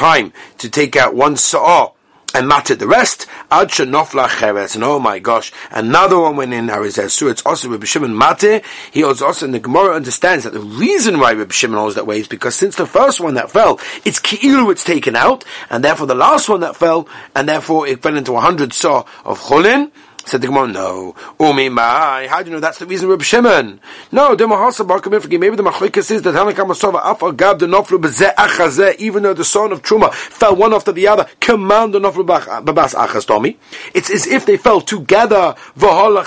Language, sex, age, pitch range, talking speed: English, male, 30-49, 145-210 Hz, 190 wpm